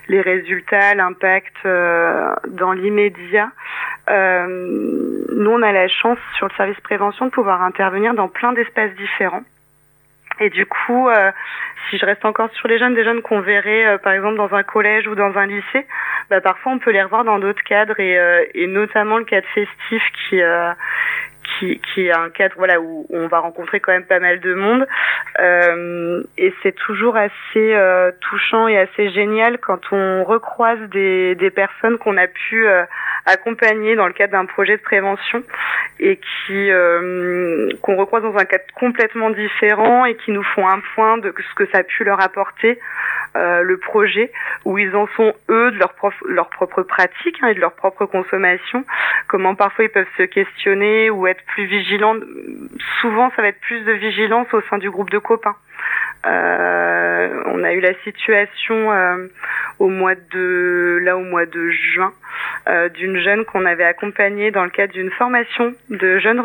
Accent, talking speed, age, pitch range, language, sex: French, 180 wpm, 20-39, 185-225 Hz, French, female